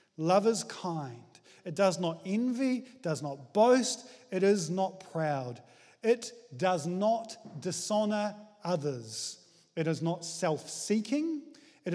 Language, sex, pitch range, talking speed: English, male, 160-220 Hz, 120 wpm